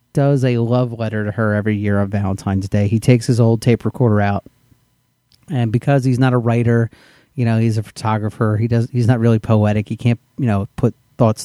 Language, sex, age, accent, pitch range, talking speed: English, male, 30-49, American, 110-125 Hz, 215 wpm